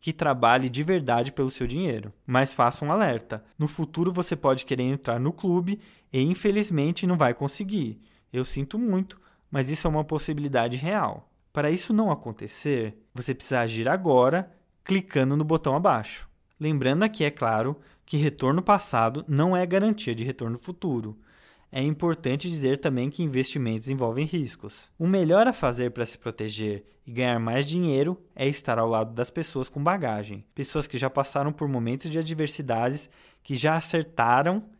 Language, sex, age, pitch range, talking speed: Portuguese, male, 20-39, 125-170 Hz, 165 wpm